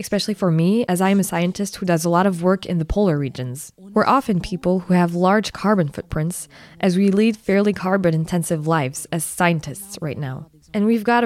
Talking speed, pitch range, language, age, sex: 210 wpm, 165-205 Hz, French, 20-39, female